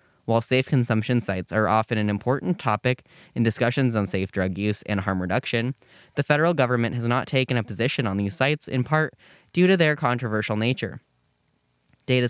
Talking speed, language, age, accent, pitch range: 180 wpm, English, 10-29, American, 110-130 Hz